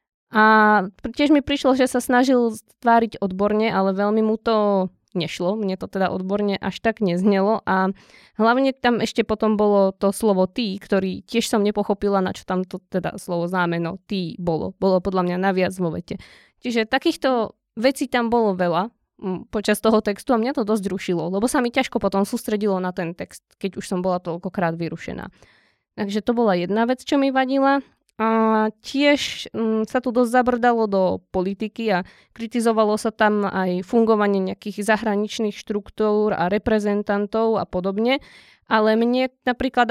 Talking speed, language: 165 wpm, Slovak